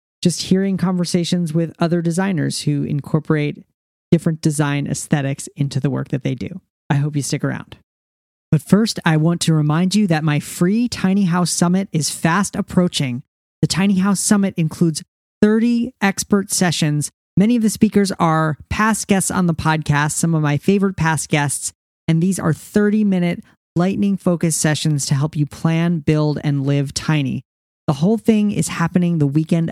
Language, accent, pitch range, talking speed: English, American, 145-180 Hz, 170 wpm